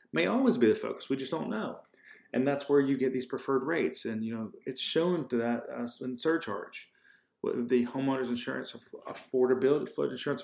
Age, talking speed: 30-49, 190 wpm